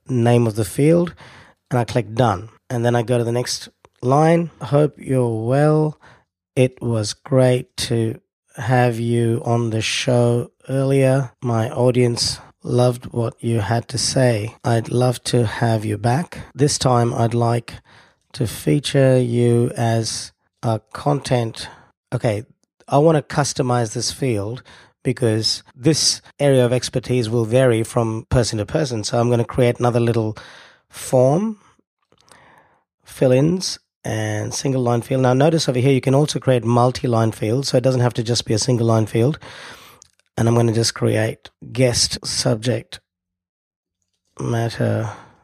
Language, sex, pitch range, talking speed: English, male, 115-130 Hz, 150 wpm